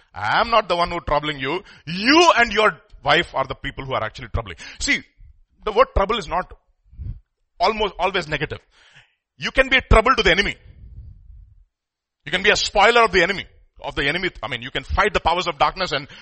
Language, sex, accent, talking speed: English, male, Indian, 215 wpm